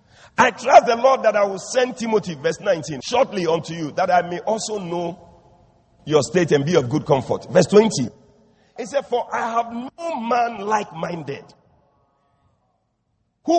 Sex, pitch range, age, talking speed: male, 175-260 Hz, 50-69, 165 wpm